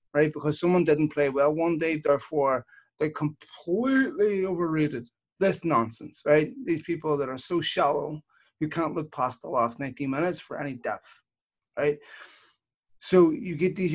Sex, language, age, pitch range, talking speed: male, English, 30-49, 140-175 Hz, 160 wpm